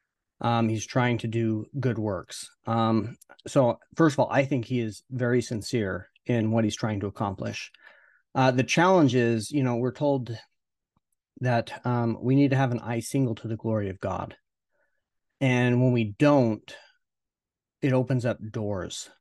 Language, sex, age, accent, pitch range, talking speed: English, male, 30-49, American, 115-135 Hz, 170 wpm